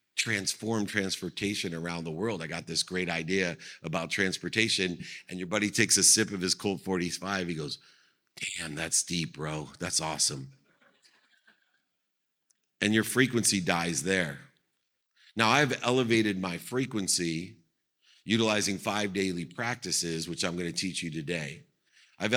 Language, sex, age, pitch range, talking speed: English, male, 50-69, 90-110 Hz, 135 wpm